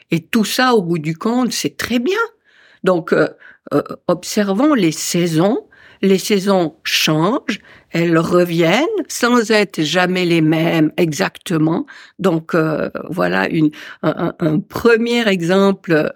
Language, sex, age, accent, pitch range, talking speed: French, female, 60-79, French, 165-220 Hz, 125 wpm